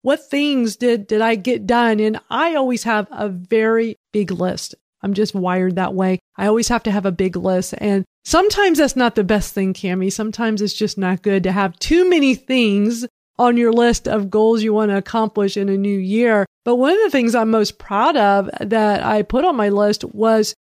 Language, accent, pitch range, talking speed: English, American, 200-230 Hz, 220 wpm